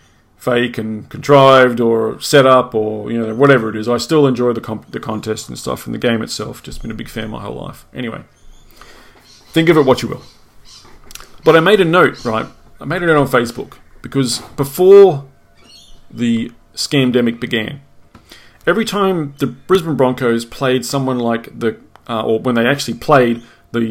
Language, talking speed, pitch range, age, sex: English, 185 wpm, 115-145 Hz, 30-49, male